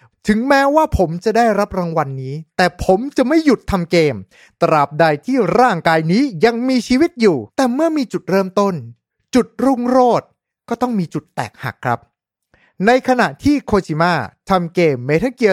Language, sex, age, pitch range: Thai, male, 30-49, 165-230 Hz